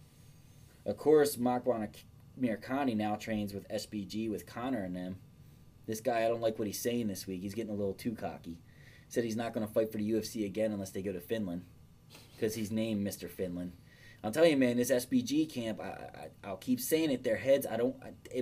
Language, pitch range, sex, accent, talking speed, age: English, 110-140 Hz, male, American, 215 wpm, 20-39